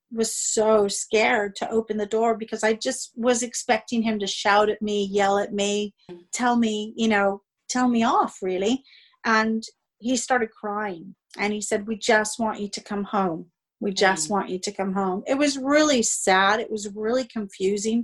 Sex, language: female, English